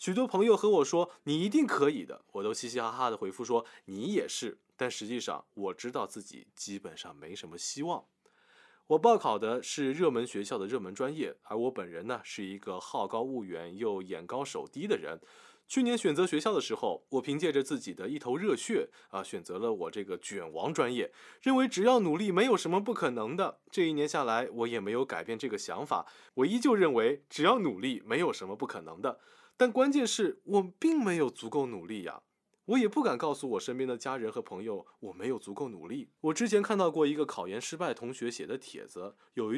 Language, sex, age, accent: Chinese, male, 20-39, native